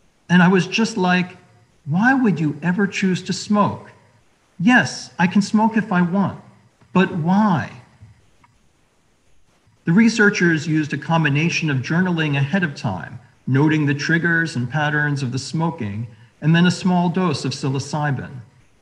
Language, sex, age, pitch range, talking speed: English, male, 50-69, 135-180 Hz, 145 wpm